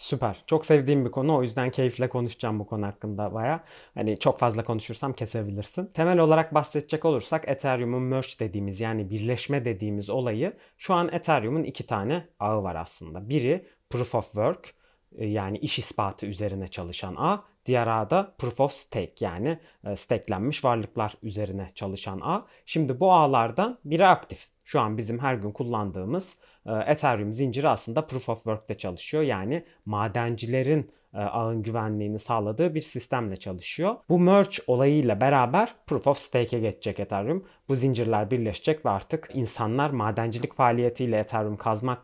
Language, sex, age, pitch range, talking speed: Turkish, male, 30-49, 105-140 Hz, 150 wpm